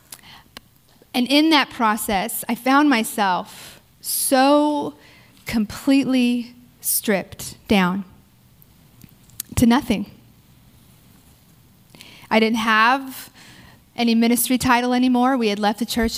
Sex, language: female, English